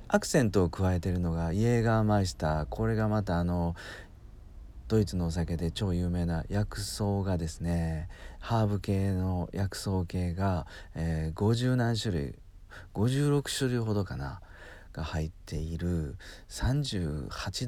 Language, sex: Japanese, male